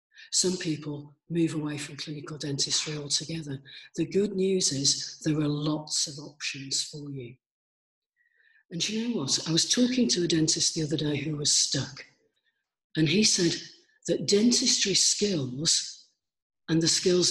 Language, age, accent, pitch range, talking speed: English, 50-69, British, 145-185 Hz, 155 wpm